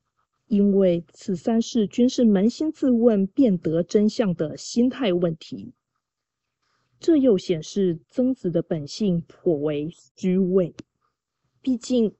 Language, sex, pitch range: Chinese, female, 160-230 Hz